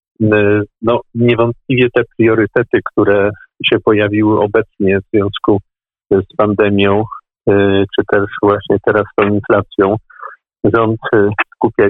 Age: 50-69